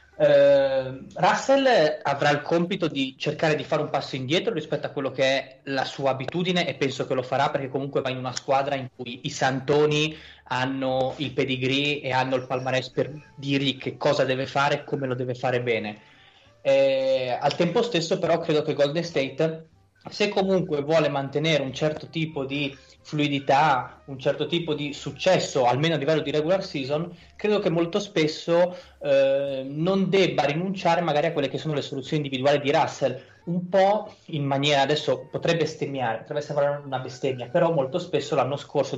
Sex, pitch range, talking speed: male, 130-160 Hz, 175 wpm